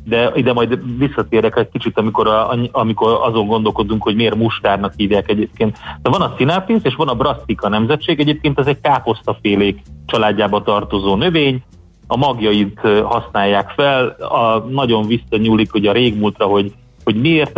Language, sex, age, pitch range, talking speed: Hungarian, male, 30-49, 105-130 Hz, 155 wpm